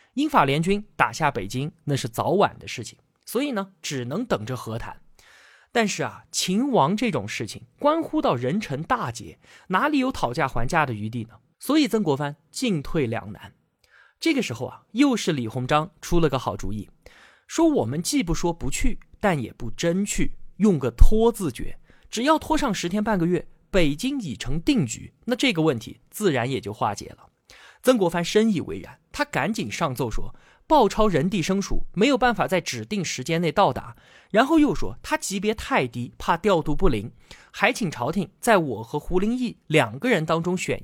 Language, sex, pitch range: Chinese, male, 135-220 Hz